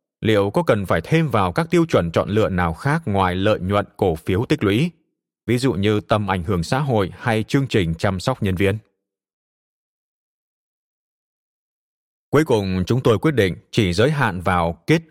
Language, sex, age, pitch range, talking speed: Vietnamese, male, 20-39, 95-130 Hz, 185 wpm